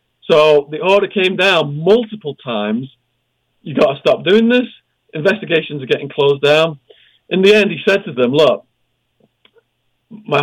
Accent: British